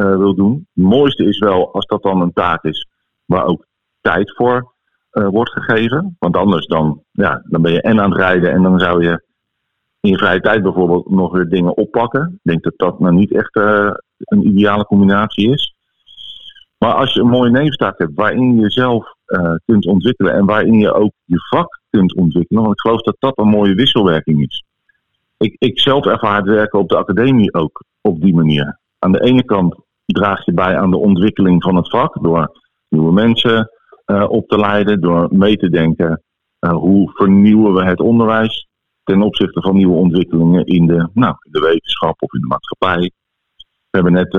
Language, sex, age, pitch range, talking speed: Dutch, male, 50-69, 90-115 Hz, 195 wpm